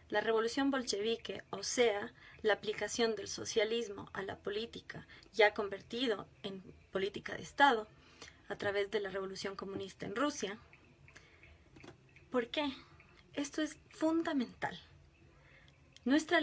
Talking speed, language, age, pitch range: 115 wpm, Spanish, 20-39, 215-270 Hz